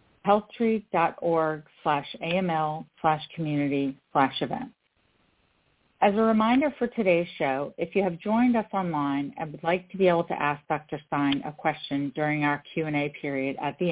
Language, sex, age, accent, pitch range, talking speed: English, female, 50-69, American, 150-195 Hz, 155 wpm